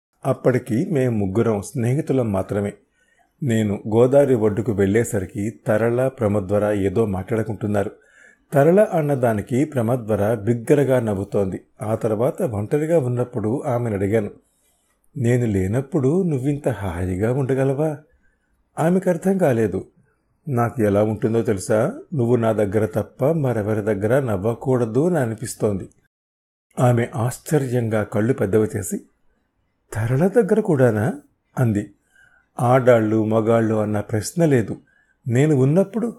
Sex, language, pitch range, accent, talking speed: male, Telugu, 105-130 Hz, native, 100 wpm